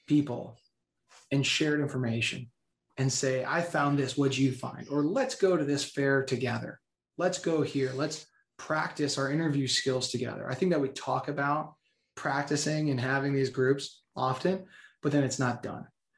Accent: American